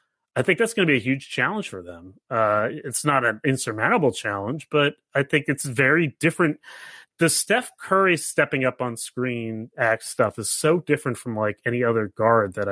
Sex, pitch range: male, 110-150 Hz